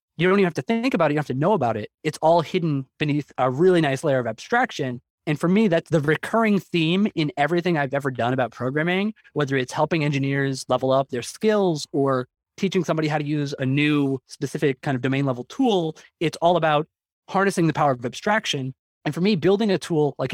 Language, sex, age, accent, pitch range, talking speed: English, male, 20-39, American, 130-170 Hz, 225 wpm